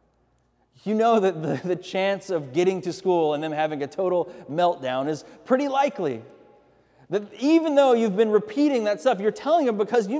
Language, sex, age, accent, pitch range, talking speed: English, male, 30-49, American, 175-245 Hz, 190 wpm